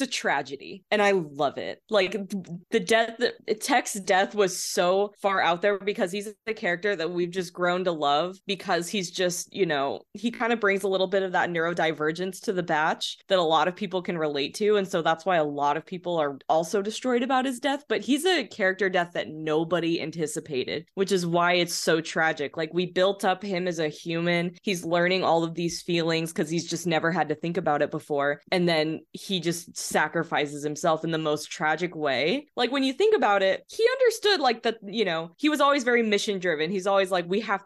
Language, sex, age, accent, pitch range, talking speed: English, female, 20-39, American, 165-210 Hz, 220 wpm